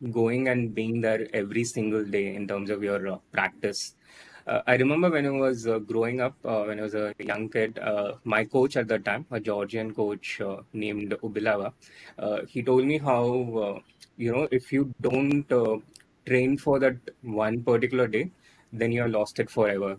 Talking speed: 190 wpm